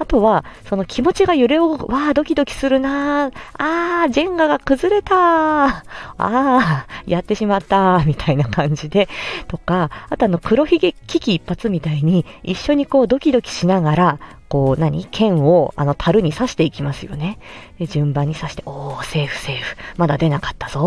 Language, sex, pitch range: Japanese, female, 160-255 Hz